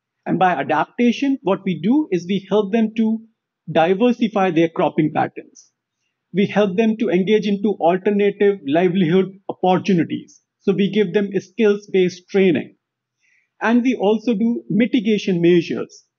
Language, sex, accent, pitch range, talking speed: English, male, Indian, 170-220 Hz, 135 wpm